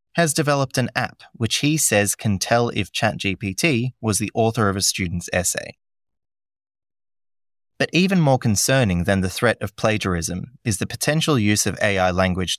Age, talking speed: 20-39, 160 wpm